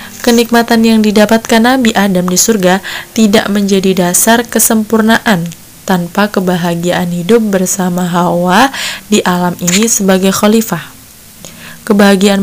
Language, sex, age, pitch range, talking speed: Indonesian, female, 20-39, 180-220 Hz, 105 wpm